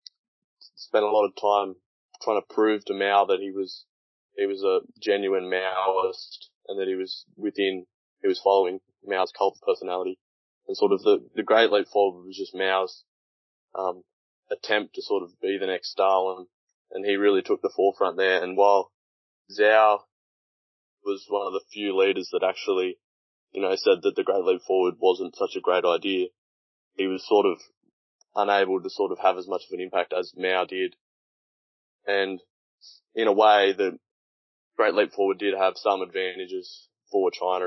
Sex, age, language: male, 20-39, English